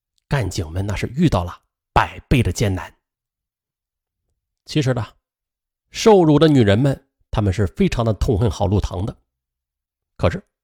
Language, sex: Chinese, male